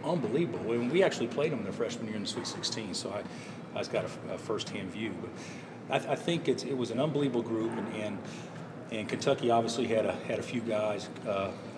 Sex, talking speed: male, 240 wpm